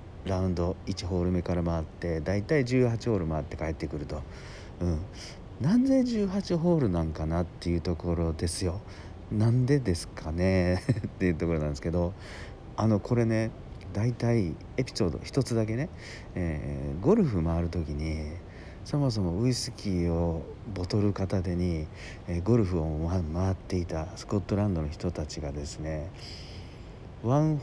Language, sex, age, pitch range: Japanese, male, 50-69, 85-105 Hz